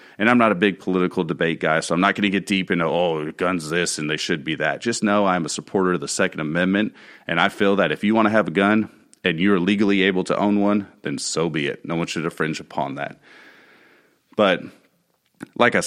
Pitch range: 85-105 Hz